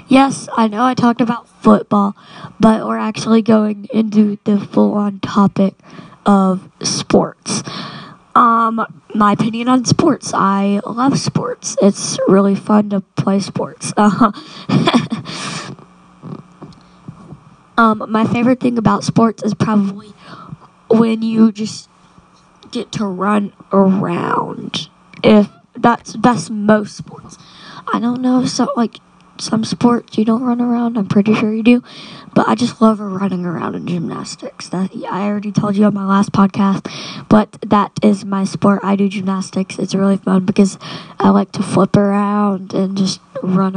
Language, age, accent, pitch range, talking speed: English, 20-39, American, 190-225 Hz, 145 wpm